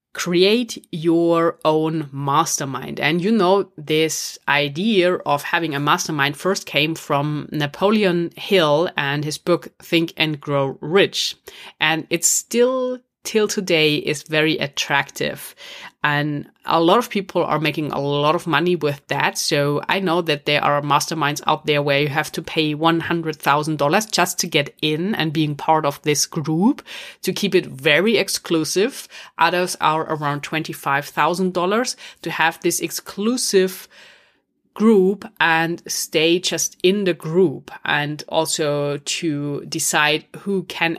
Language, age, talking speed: English, 30-49, 140 wpm